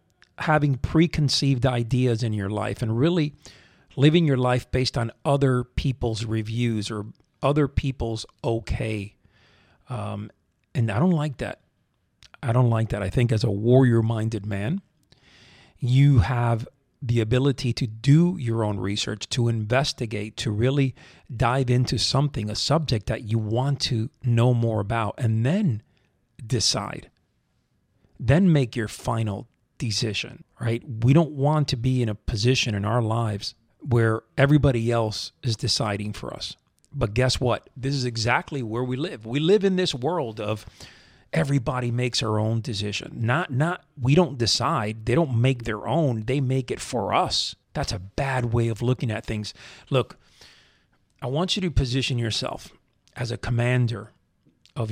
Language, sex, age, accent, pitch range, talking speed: English, male, 40-59, American, 110-135 Hz, 155 wpm